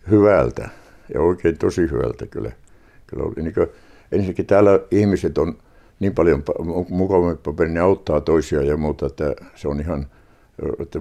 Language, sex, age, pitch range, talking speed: Finnish, male, 60-79, 75-95 Hz, 160 wpm